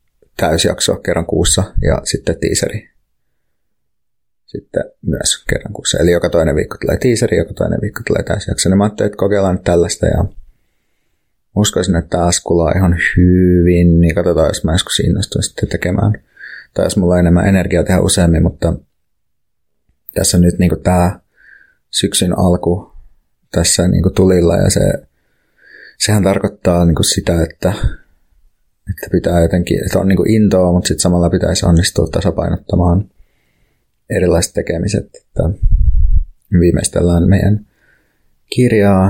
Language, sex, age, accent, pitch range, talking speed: Finnish, male, 30-49, native, 85-95 Hz, 135 wpm